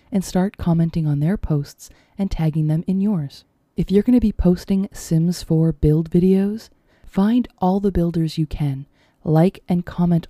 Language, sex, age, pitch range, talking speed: English, female, 20-39, 150-195 Hz, 170 wpm